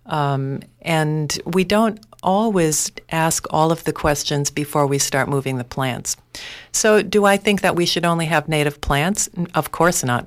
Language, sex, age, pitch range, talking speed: English, female, 50-69, 145-180 Hz, 175 wpm